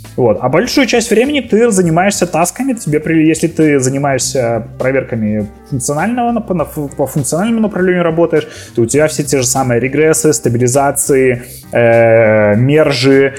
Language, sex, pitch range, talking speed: Ukrainian, male, 115-145 Hz, 130 wpm